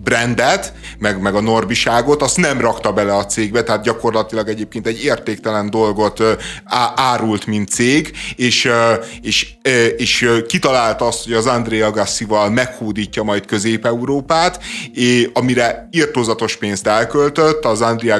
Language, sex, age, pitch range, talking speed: Hungarian, male, 30-49, 110-130 Hz, 130 wpm